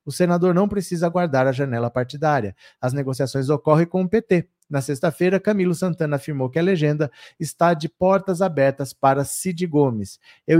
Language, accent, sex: Portuguese, Brazilian, male